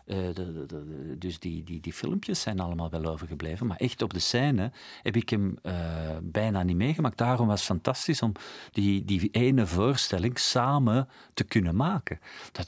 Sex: male